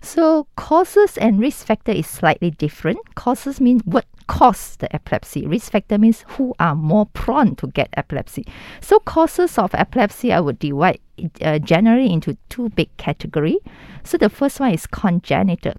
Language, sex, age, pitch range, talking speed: English, female, 50-69, 165-235 Hz, 165 wpm